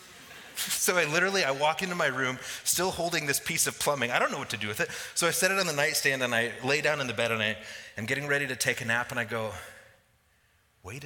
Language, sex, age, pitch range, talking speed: English, male, 30-49, 120-175 Hz, 260 wpm